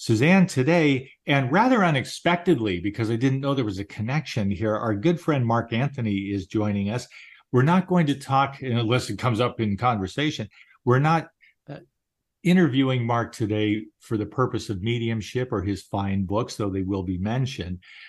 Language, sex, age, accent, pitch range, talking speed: English, male, 50-69, American, 105-135 Hz, 175 wpm